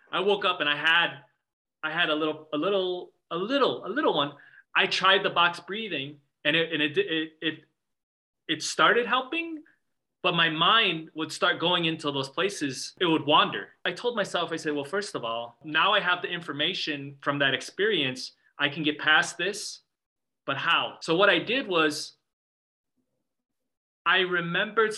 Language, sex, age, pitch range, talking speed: English, male, 30-49, 145-175 Hz, 180 wpm